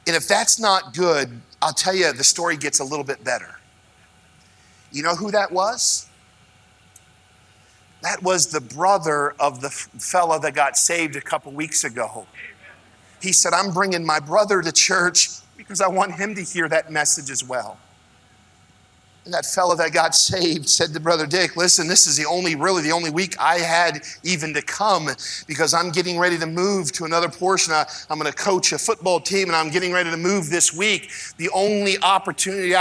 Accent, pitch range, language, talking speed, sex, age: American, 125-185 Hz, English, 185 wpm, male, 40-59